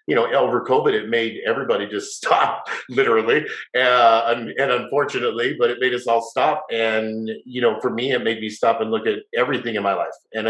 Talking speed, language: 210 wpm, English